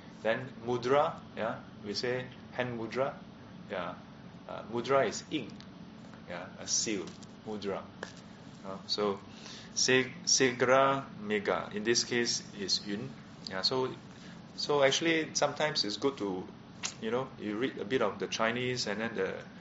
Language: English